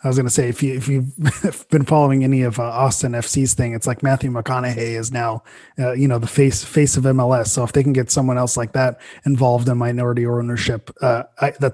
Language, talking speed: English, 240 wpm